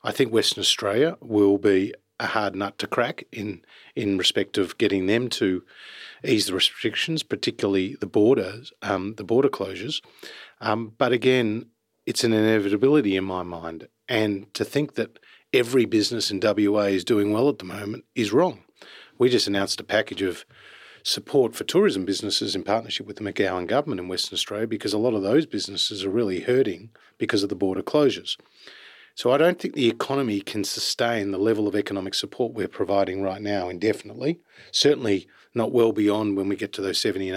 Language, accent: English, Australian